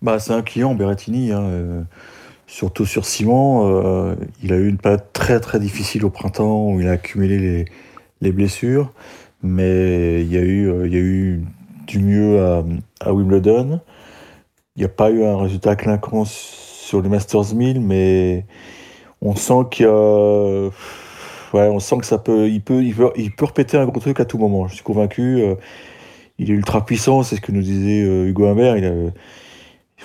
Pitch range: 95-115 Hz